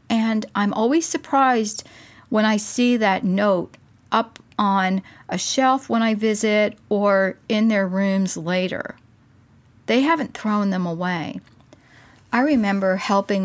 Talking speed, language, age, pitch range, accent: 130 wpm, English, 50-69, 130-210 Hz, American